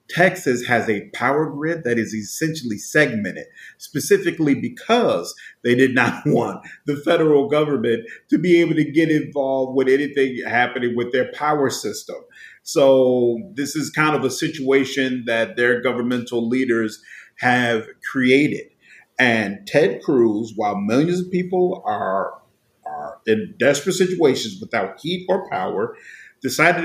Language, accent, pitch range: English, American, 125-185 Hz